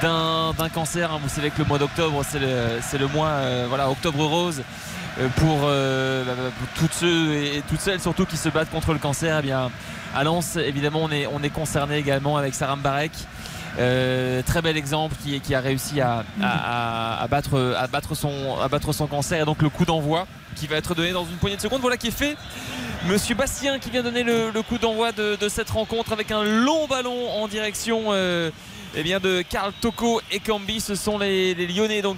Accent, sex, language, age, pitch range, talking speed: French, male, French, 20-39, 150-200 Hz, 225 wpm